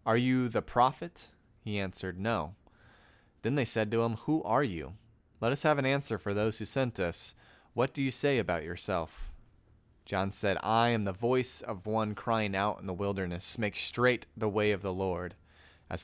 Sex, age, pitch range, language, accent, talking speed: male, 30-49, 95-110 Hz, English, American, 195 wpm